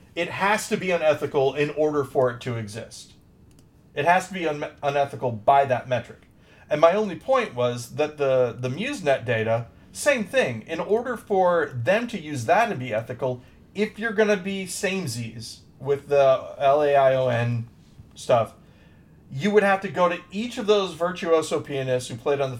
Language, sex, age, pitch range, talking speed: English, male, 40-59, 130-190 Hz, 185 wpm